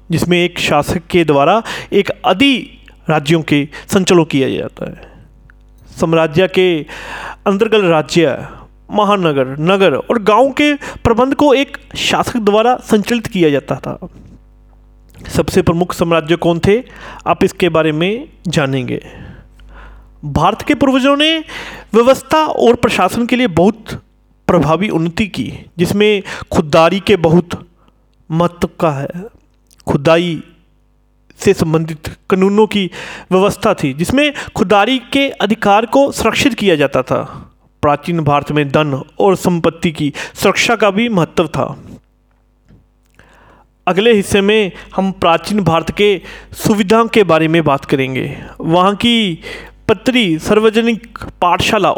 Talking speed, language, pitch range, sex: 125 wpm, Hindi, 165-225 Hz, male